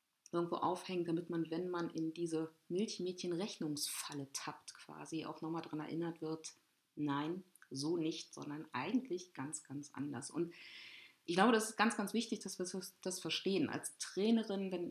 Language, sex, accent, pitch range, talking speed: German, female, German, 165-190 Hz, 160 wpm